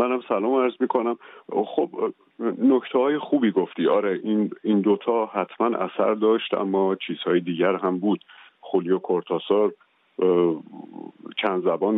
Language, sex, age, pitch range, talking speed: Persian, male, 50-69, 90-105 Hz, 125 wpm